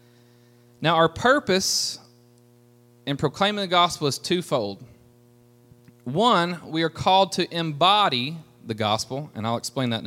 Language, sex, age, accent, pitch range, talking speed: English, male, 30-49, American, 120-165 Hz, 130 wpm